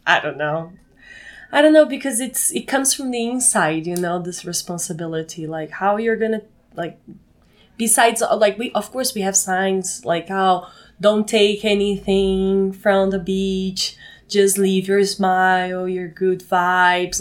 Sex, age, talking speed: female, 20-39, 155 wpm